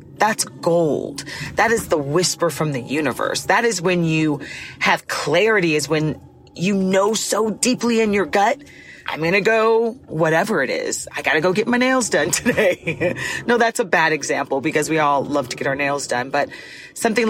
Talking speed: 195 wpm